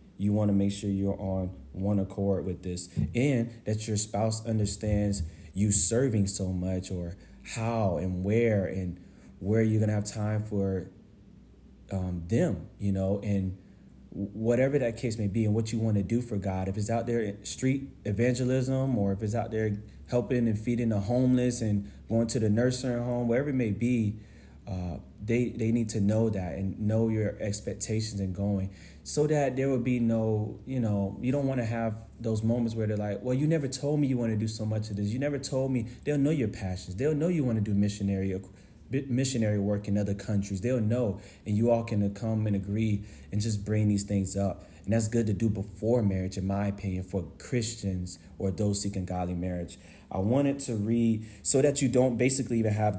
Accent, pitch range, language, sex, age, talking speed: American, 100-120 Hz, English, male, 30-49, 210 wpm